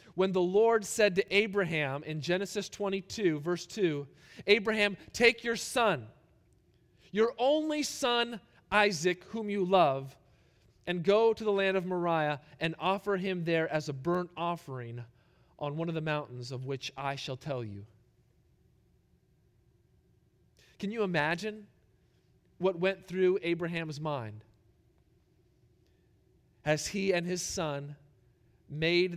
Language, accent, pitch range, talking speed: English, American, 130-185 Hz, 130 wpm